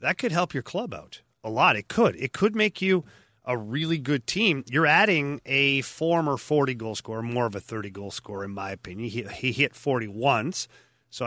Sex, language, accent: male, English, American